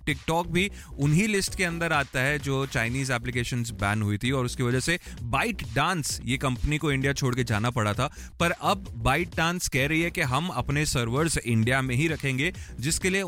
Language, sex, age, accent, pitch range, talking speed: Hindi, male, 30-49, native, 125-170 Hz, 150 wpm